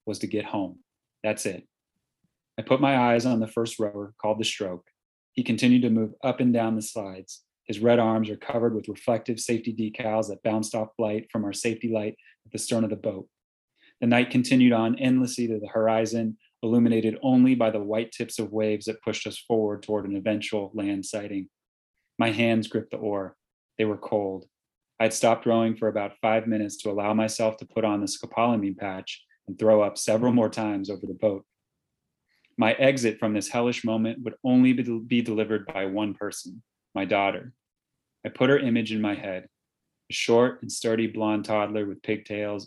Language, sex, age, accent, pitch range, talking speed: English, male, 30-49, American, 105-115 Hz, 195 wpm